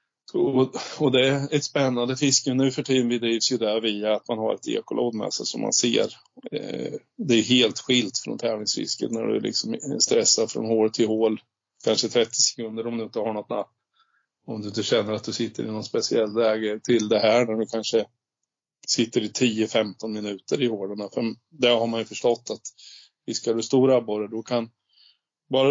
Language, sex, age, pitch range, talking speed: Swedish, male, 20-39, 110-125 Hz, 200 wpm